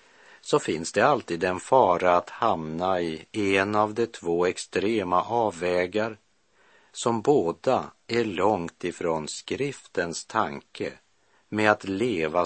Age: 50-69